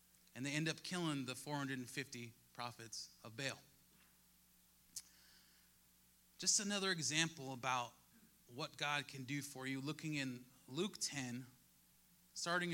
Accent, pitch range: American, 130-185 Hz